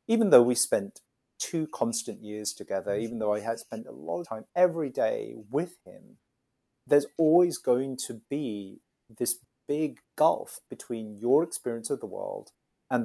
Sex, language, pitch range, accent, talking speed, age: male, English, 125-170 Hz, British, 165 wpm, 40-59